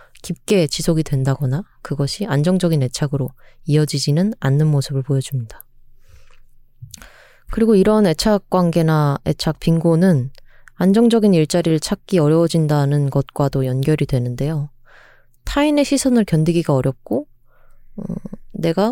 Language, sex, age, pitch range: Korean, female, 20-39, 140-190 Hz